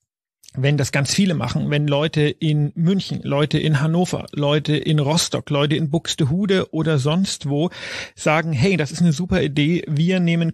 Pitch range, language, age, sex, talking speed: 145-170 Hz, German, 40-59, male, 170 wpm